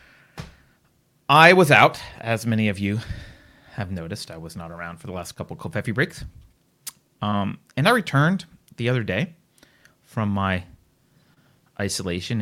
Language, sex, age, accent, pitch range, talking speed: English, male, 30-49, American, 100-155 Hz, 145 wpm